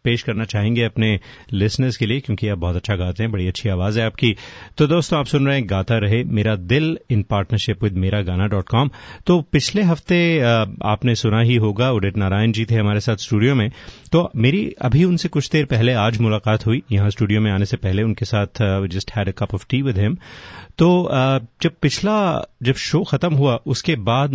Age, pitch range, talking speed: 30-49, 105-130 Hz, 205 wpm